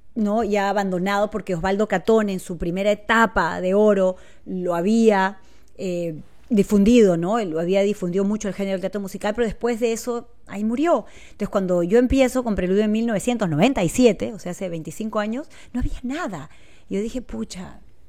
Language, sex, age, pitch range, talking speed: Spanish, female, 30-49, 195-240 Hz, 170 wpm